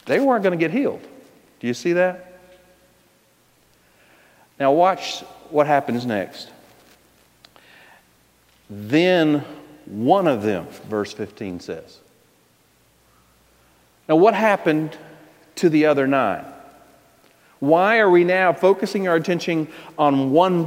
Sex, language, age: male, English, 50-69